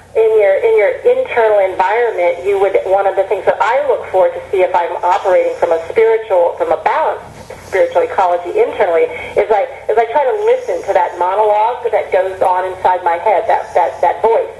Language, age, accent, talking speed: English, 50-69, American, 205 wpm